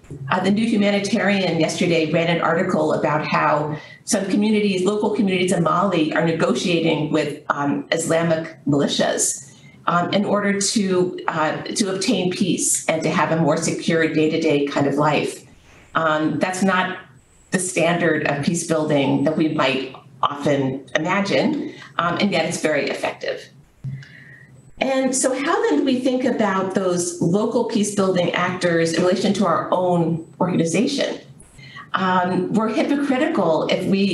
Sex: female